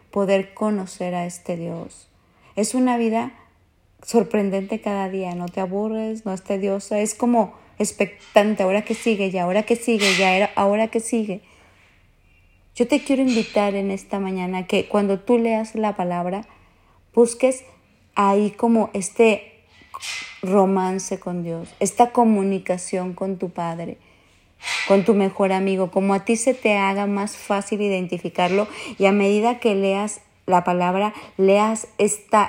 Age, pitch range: 30-49, 180-210 Hz